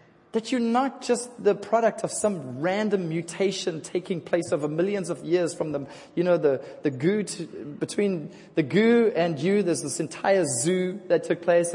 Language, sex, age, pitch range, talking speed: English, male, 20-39, 180-230 Hz, 185 wpm